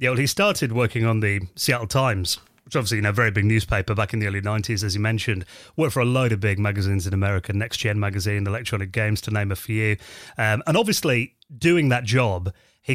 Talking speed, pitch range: 230 wpm, 100-125 Hz